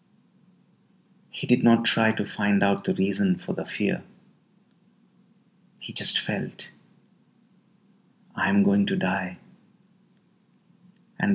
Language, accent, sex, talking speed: English, Indian, male, 110 wpm